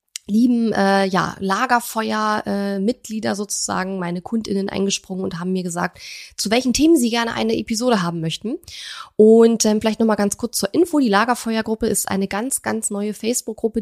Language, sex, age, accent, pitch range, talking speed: German, female, 20-39, German, 190-230 Hz, 175 wpm